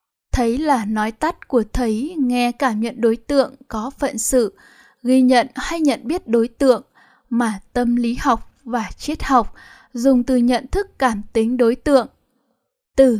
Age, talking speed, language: 10-29, 170 wpm, Vietnamese